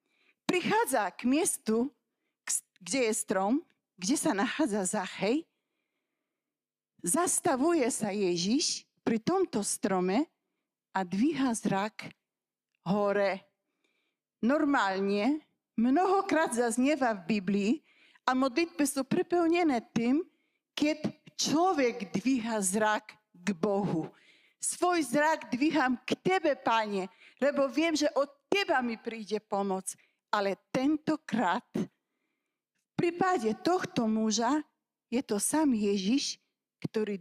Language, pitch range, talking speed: Slovak, 215-305 Hz, 100 wpm